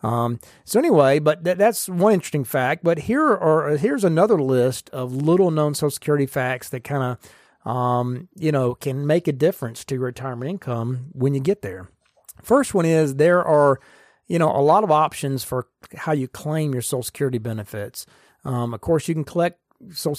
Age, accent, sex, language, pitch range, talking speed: 40-59, American, male, English, 125-155 Hz, 195 wpm